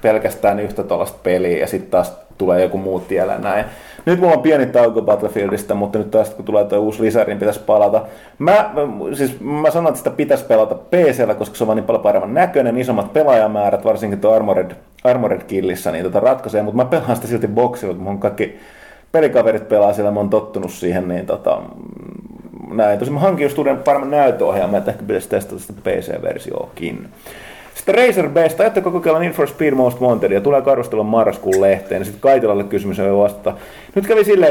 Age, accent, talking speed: 30-49, native, 190 wpm